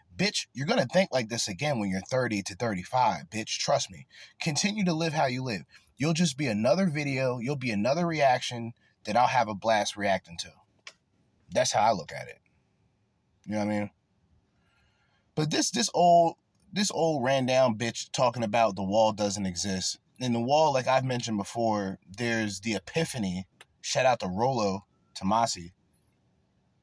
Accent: American